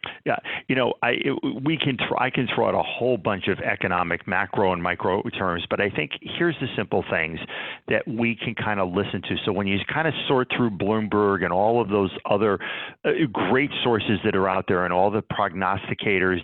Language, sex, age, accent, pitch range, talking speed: English, male, 50-69, American, 95-120 Hz, 210 wpm